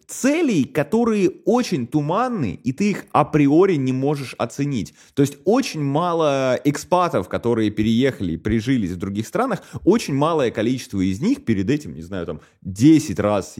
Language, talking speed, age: Russian, 155 wpm, 20-39